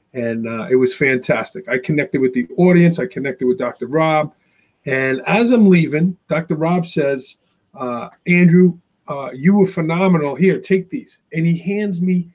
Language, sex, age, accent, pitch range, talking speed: English, male, 40-59, American, 165-205 Hz, 170 wpm